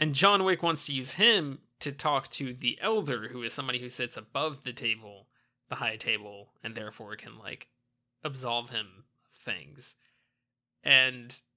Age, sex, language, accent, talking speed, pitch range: 20-39, male, English, American, 165 wpm, 120-145 Hz